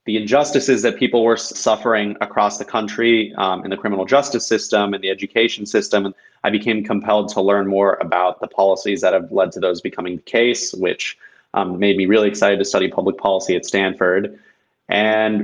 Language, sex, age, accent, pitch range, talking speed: English, male, 20-39, American, 100-115 Hz, 190 wpm